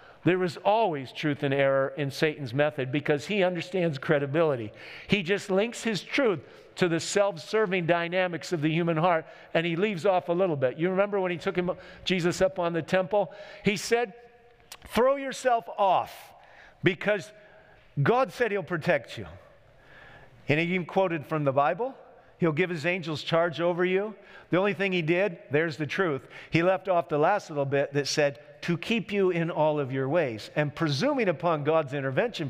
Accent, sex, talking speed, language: American, male, 180 wpm, English